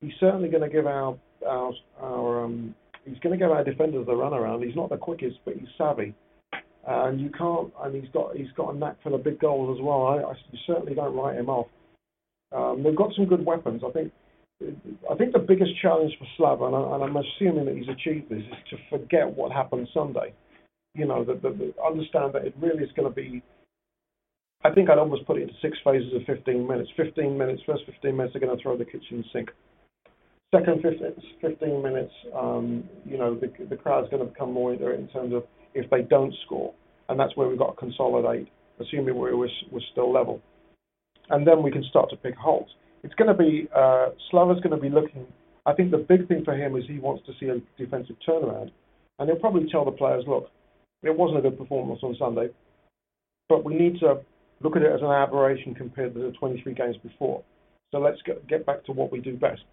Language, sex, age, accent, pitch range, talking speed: English, male, 50-69, British, 125-160 Hz, 220 wpm